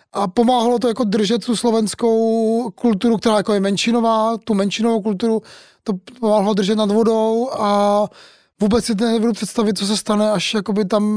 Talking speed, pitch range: 165 wpm, 200-225 Hz